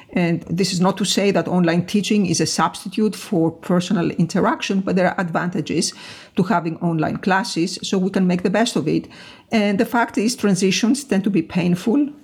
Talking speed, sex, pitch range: 195 wpm, female, 170-215 Hz